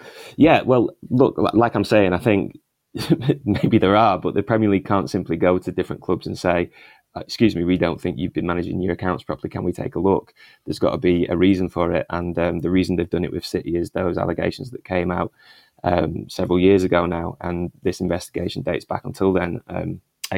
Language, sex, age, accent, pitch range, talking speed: English, male, 20-39, British, 90-100 Hz, 225 wpm